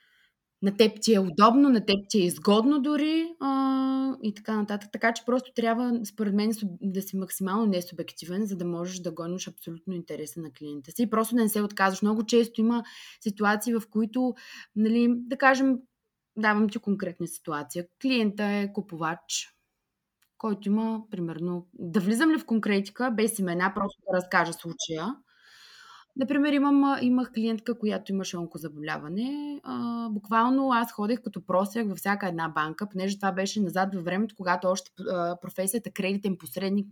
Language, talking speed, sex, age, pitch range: Bulgarian, 160 wpm, female, 20-39, 180-230 Hz